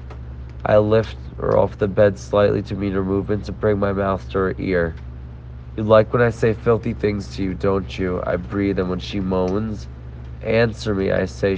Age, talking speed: 30-49, 200 wpm